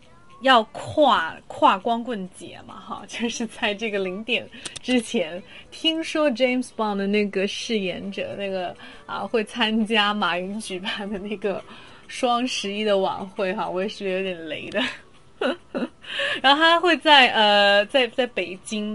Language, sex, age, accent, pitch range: Chinese, female, 20-39, native, 195-265 Hz